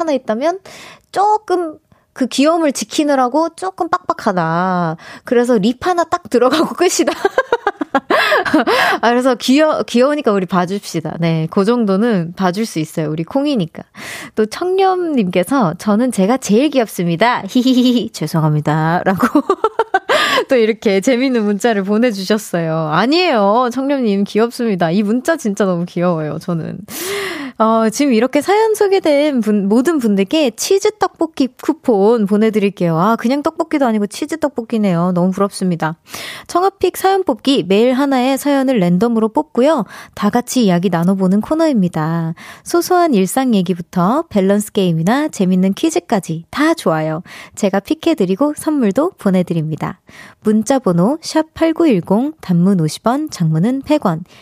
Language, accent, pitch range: Korean, native, 190-300 Hz